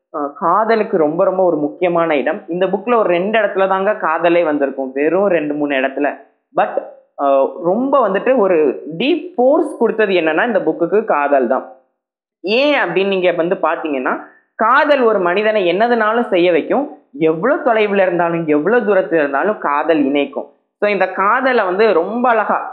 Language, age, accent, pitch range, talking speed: Tamil, 20-39, native, 150-215 Hz, 145 wpm